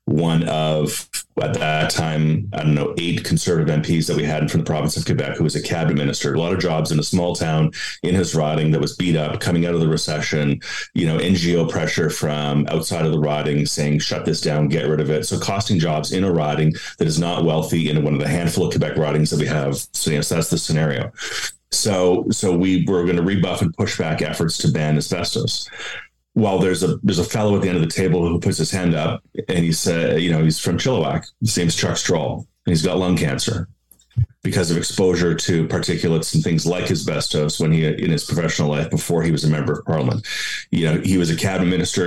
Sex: male